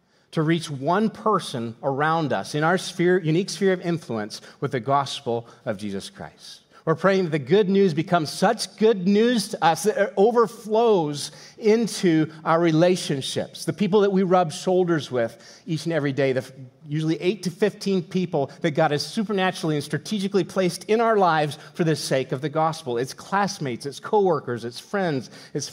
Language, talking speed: English, 175 wpm